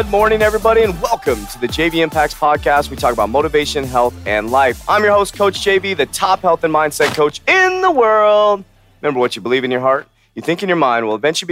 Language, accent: English, American